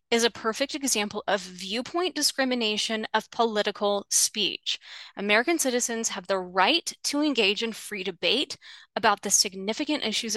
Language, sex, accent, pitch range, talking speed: English, female, American, 205-270 Hz, 140 wpm